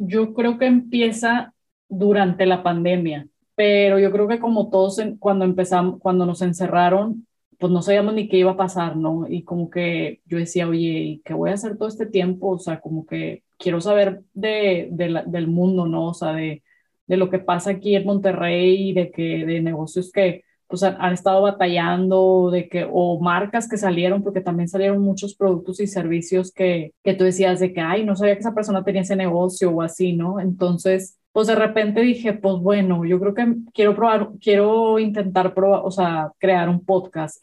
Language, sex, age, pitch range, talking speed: Spanish, female, 20-39, 180-205 Hz, 200 wpm